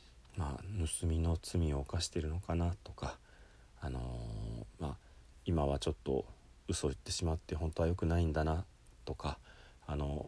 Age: 40-59